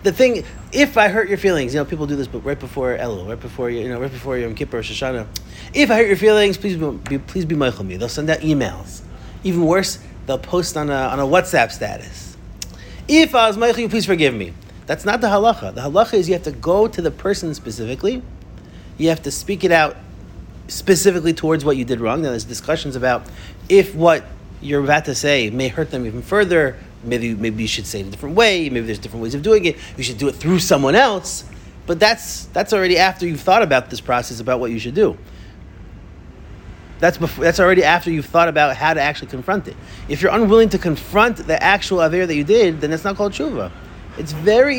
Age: 30-49